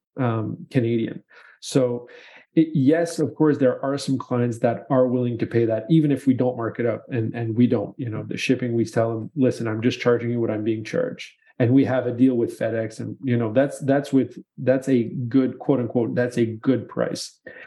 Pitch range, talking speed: 115-130 Hz, 225 wpm